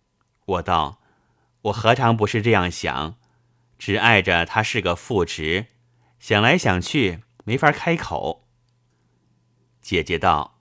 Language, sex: Chinese, male